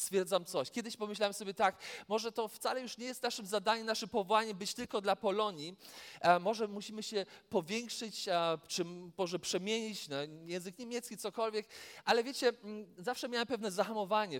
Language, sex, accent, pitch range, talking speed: Polish, male, native, 195-235 Hz, 160 wpm